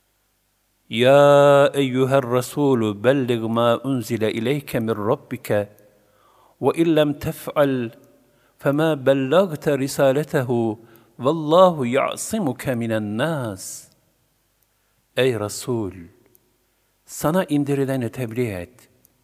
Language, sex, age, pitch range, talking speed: Turkish, male, 50-69, 105-140 Hz, 80 wpm